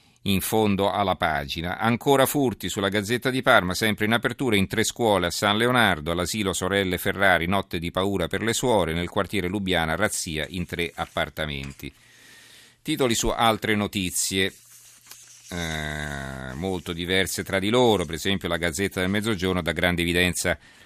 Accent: native